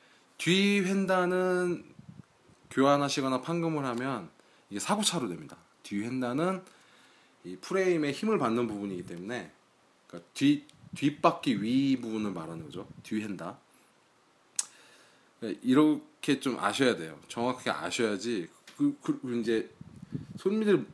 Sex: male